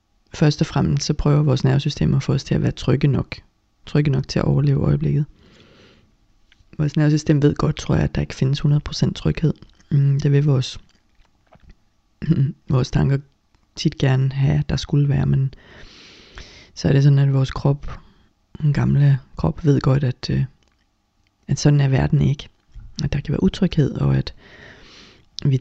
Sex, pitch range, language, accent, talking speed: female, 105-150 Hz, Danish, native, 170 wpm